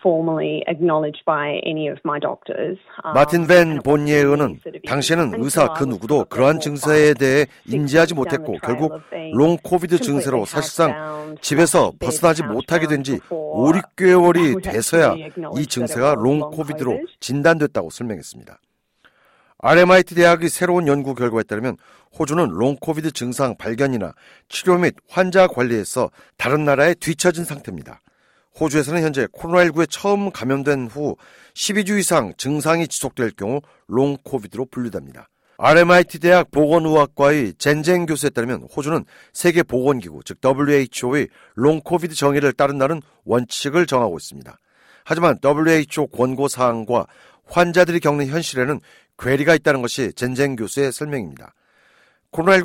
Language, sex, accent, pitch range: Korean, male, native, 135-170 Hz